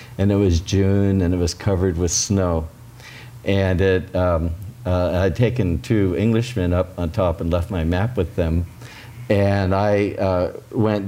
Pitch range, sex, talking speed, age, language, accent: 90-110 Hz, male, 160 wpm, 50-69, English, American